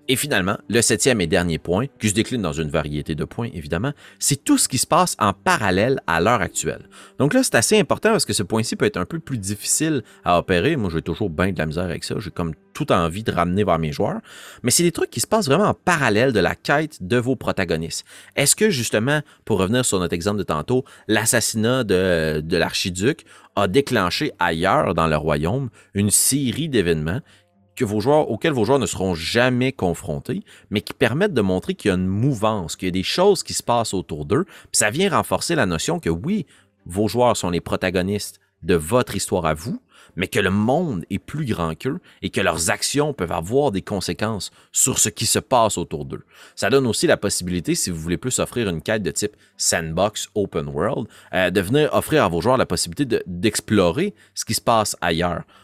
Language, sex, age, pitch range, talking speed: French, male, 30-49, 90-130 Hz, 215 wpm